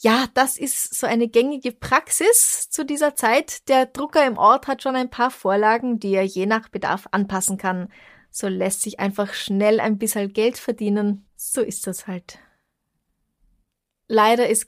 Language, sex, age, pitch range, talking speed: German, female, 20-39, 190-230 Hz, 170 wpm